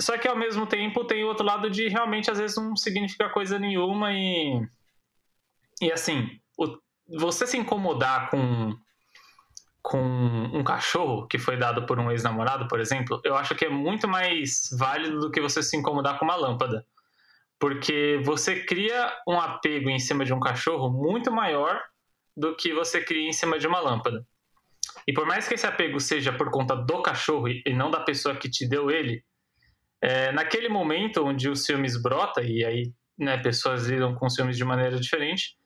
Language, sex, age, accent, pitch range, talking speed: Portuguese, male, 20-39, Brazilian, 130-200 Hz, 180 wpm